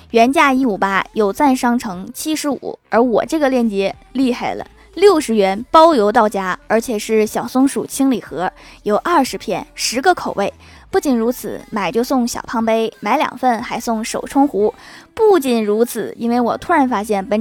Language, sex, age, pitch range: Chinese, female, 20-39, 220-270 Hz